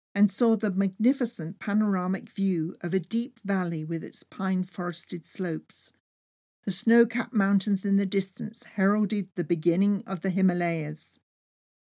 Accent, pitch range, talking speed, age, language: British, 175-230 Hz, 130 wpm, 50-69, English